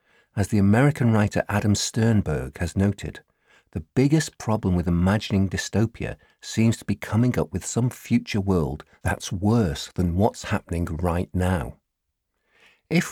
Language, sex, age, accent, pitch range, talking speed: English, male, 50-69, British, 90-115 Hz, 140 wpm